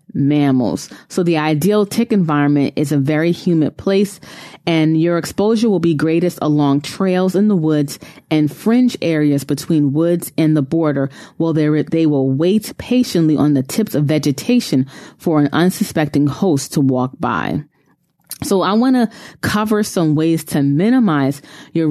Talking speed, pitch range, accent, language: 160 wpm, 150-185 Hz, American, English